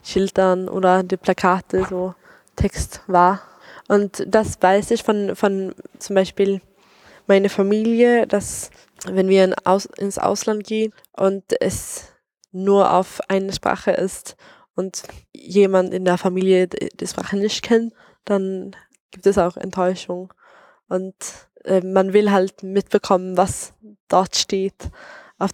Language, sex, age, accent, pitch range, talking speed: German, female, 10-29, German, 185-205 Hz, 135 wpm